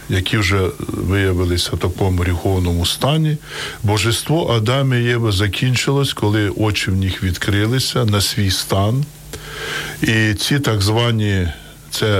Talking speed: 125 wpm